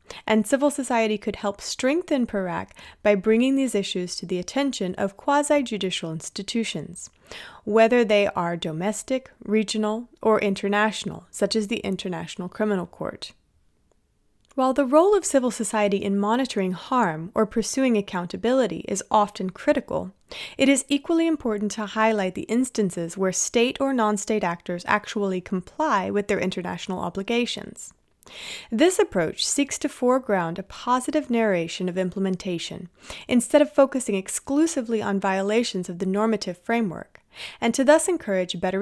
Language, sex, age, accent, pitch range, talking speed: English, female, 30-49, American, 190-250 Hz, 140 wpm